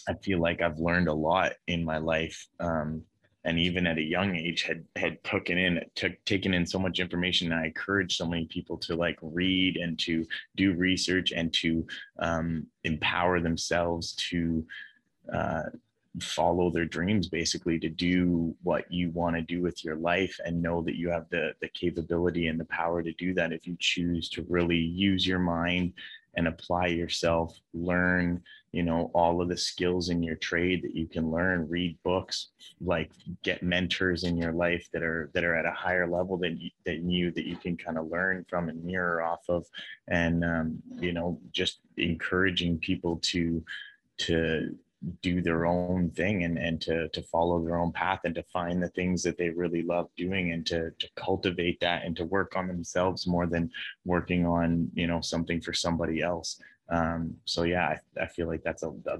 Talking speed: 195 wpm